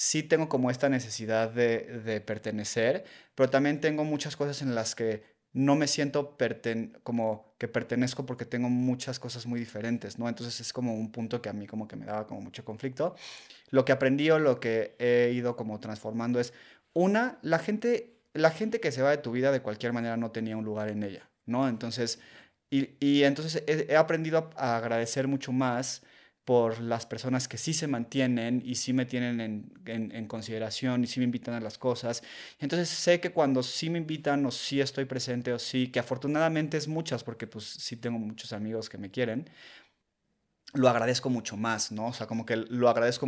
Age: 30-49